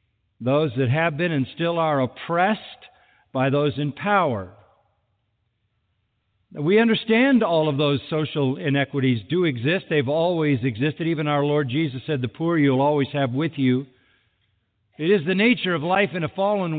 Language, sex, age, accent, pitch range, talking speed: English, male, 50-69, American, 125-170 Hz, 160 wpm